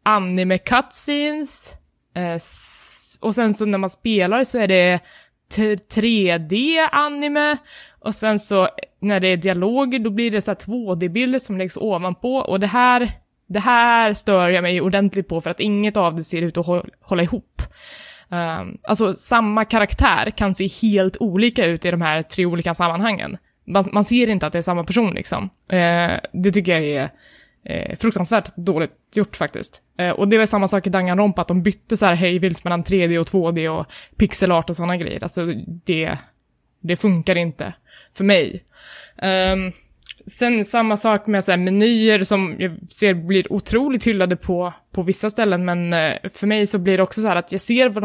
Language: Swedish